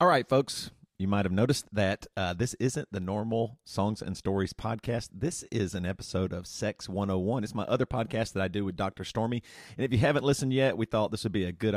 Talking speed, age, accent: 240 wpm, 40-59, American